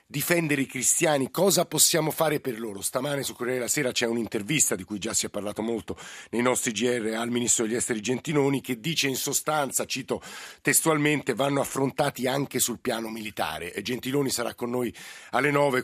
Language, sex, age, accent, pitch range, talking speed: Italian, male, 50-69, native, 115-140 Hz, 185 wpm